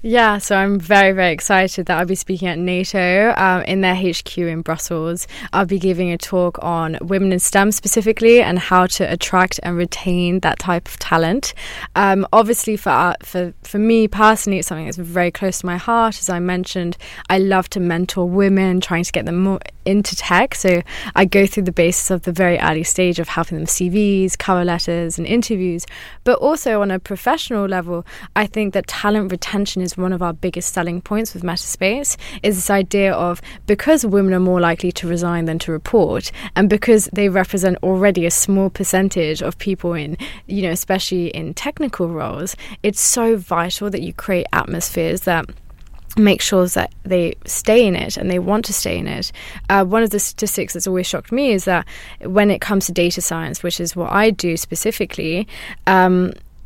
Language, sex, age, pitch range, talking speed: English, female, 20-39, 175-200 Hz, 195 wpm